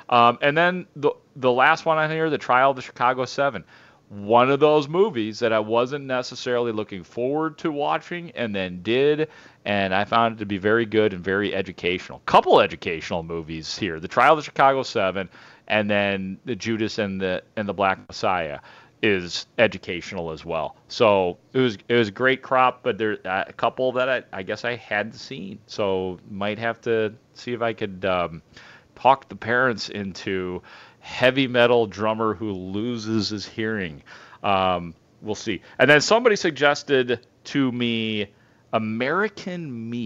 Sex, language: male, English